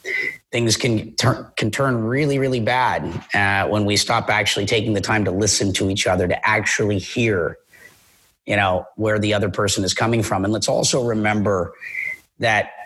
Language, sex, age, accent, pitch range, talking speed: English, male, 30-49, American, 100-115 Hz, 175 wpm